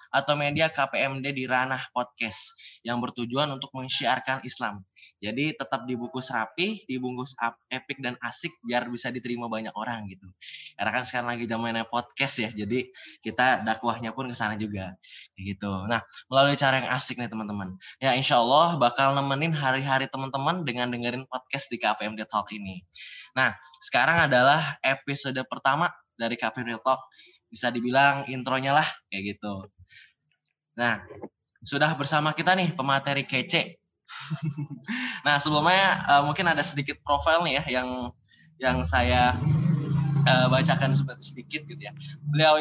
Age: 10-29